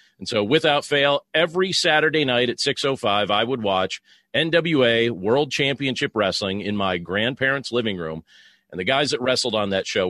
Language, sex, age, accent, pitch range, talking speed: English, male, 40-59, American, 110-150 Hz, 170 wpm